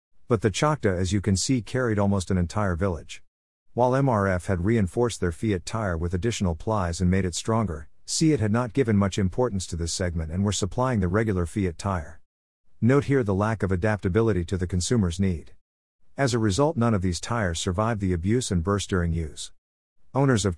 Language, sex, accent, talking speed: English, male, American, 200 wpm